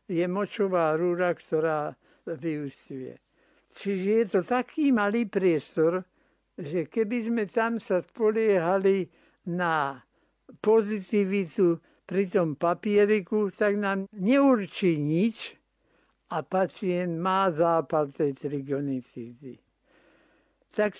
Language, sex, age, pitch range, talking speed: Slovak, male, 60-79, 165-210 Hz, 95 wpm